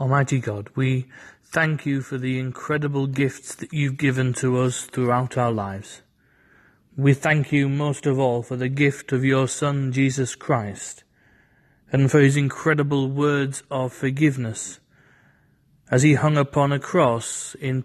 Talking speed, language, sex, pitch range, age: 150 wpm, English, male, 125-145 Hz, 30-49